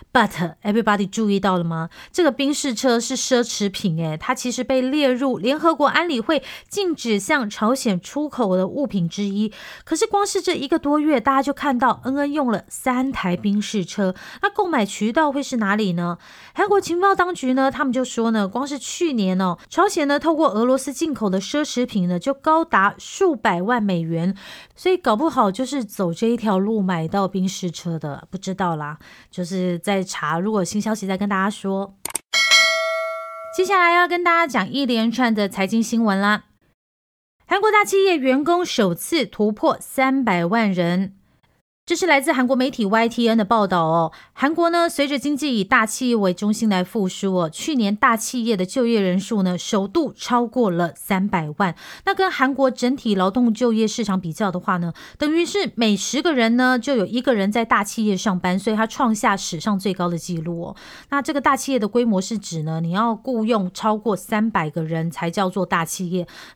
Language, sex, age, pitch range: Chinese, female, 30-49, 195-275 Hz